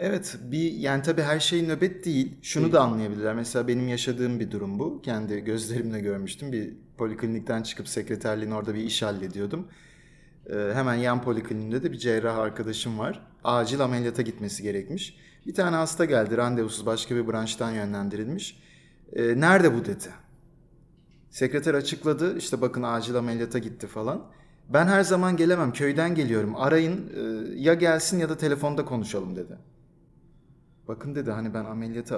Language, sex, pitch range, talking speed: Turkish, male, 115-155 Hz, 150 wpm